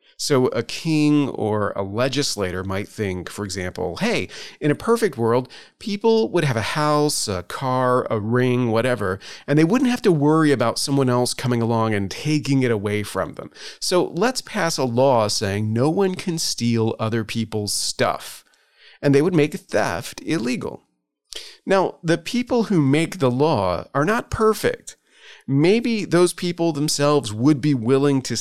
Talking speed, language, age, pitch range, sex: 165 wpm, English, 40-59, 115-155 Hz, male